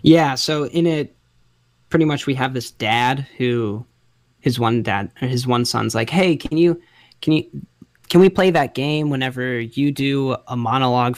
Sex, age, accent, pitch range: male, 10-29, American, 110-140 Hz